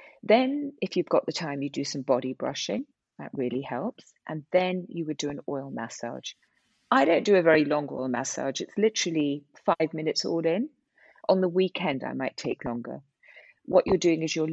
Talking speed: 200 wpm